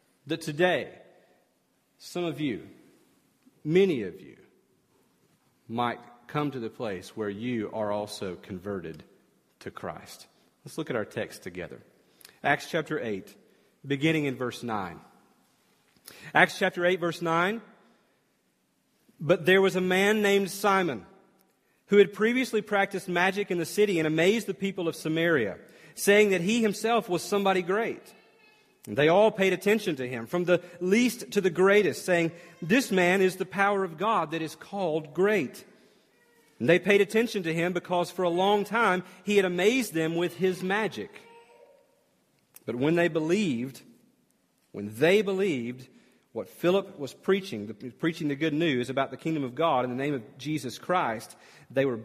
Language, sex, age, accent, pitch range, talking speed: English, male, 40-59, American, 150-200 Hz, 160 wpm